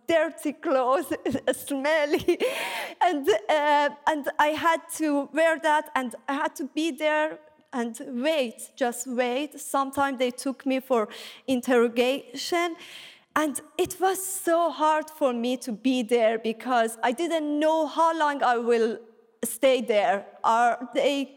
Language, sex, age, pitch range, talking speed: English, female, 30-49, 250-310 Hz, 140 wpm